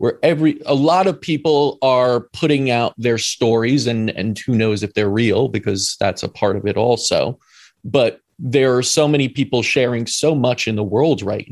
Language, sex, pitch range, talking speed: English, male, 120-155 Hz, 200 wpm